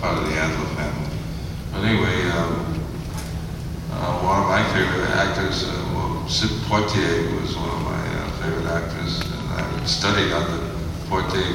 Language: English